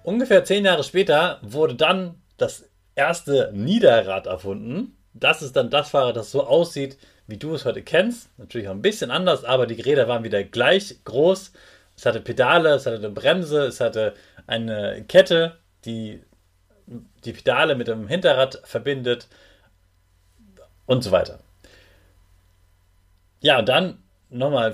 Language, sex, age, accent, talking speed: German, male, 30-49, German, 145 wpm